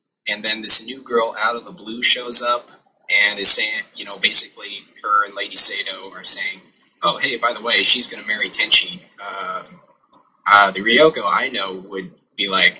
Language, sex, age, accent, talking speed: English, male, 20-39, American, 195 wpm